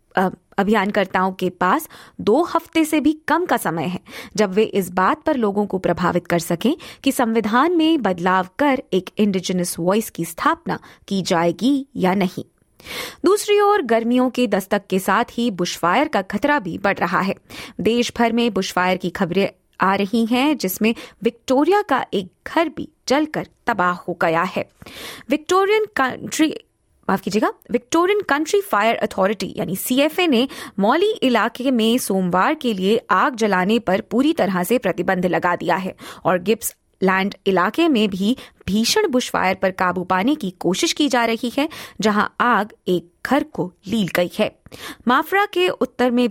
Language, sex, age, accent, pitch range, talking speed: Hindi, female, 20-39, native, 185-270 Hz, 165 wpm